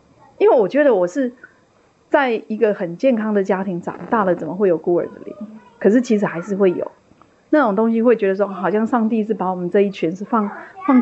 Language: Chinese